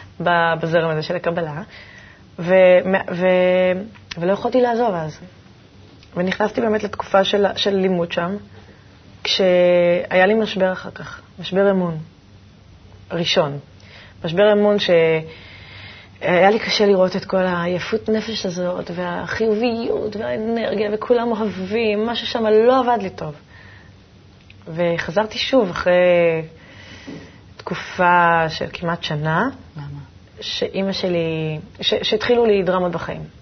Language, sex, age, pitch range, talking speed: Hebrew, female, 20-39, 150-195 Hz, 110 wpm